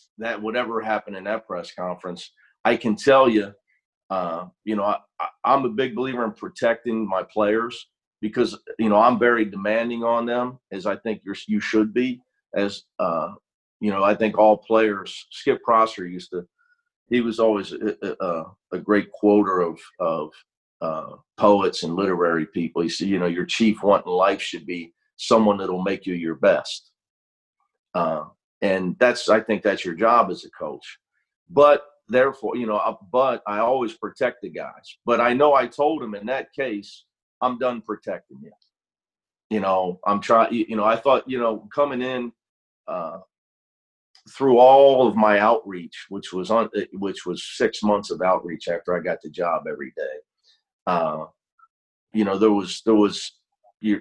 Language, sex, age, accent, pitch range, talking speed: English, male, 40-59, American, 100-125 Hz, 175 wpm